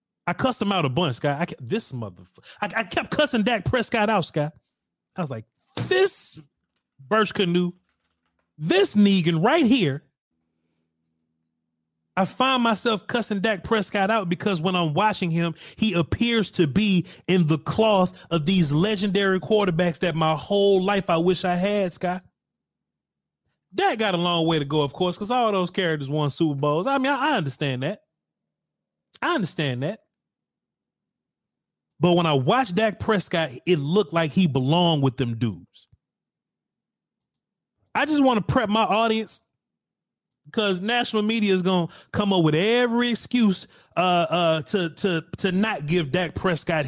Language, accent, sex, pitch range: English, American, male, 160-215 Hz